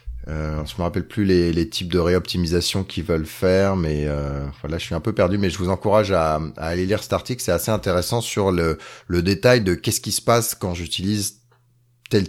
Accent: French